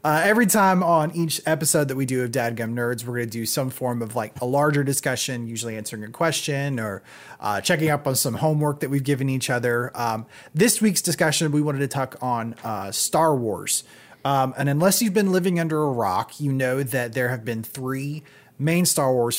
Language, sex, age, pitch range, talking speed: English, male, 30-49, 120-170 Hz, 215 wpm